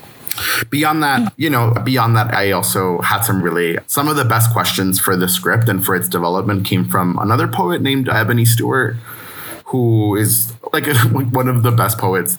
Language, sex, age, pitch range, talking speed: English, male, 20-39, 95-125 Hz, 185 wpm